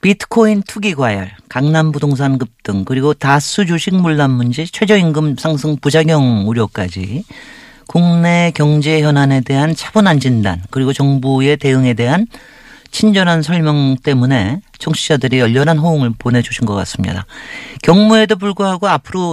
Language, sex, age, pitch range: Korean, male, 40-59, 125-175 Hz